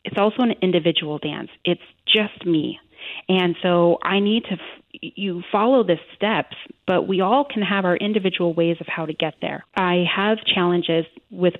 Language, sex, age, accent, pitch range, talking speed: English, female, 30-49, American, 165-200 Hz, 180 wpm